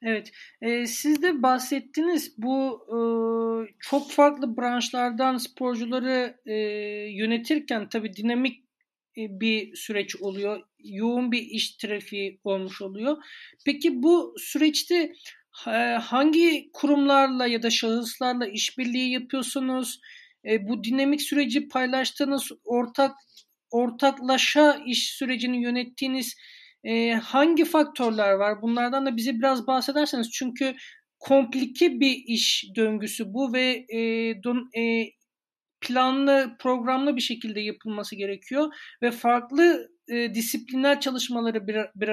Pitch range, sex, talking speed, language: 225-270 Hz, male, 105 wpm, Turkish